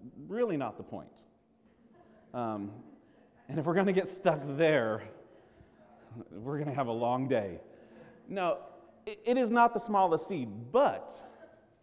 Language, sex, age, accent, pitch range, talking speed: English, male, 40-59, American, 115-175 Hz, 145 wpm